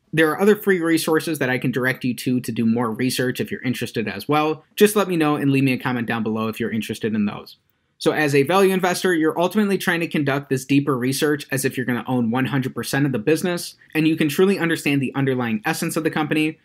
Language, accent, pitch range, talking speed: English, American, 125-160 Hz, 250 wpm